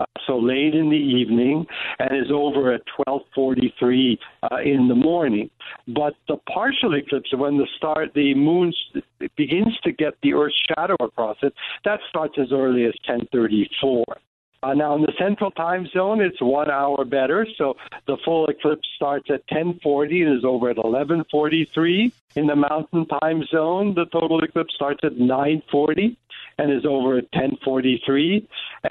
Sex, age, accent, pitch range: male, 60-79, American, 125-160 Hz